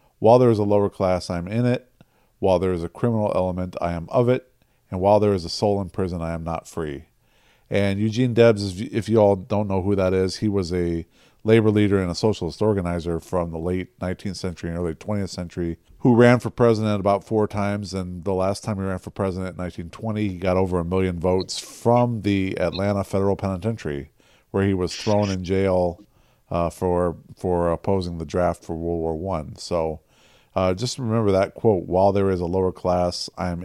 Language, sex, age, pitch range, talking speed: English, male, 40-59, 85-105 Hz, 210 wpm